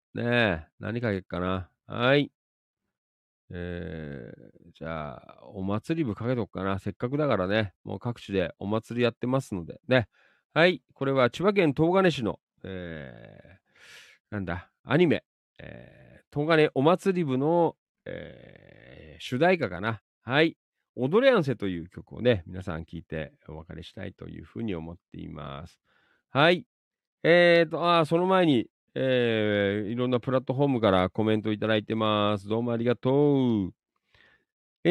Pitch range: 100-155 Hz